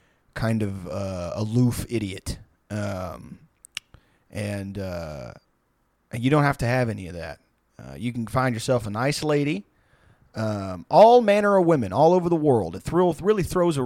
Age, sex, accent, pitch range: 30-49, male, American, 100-125 Hz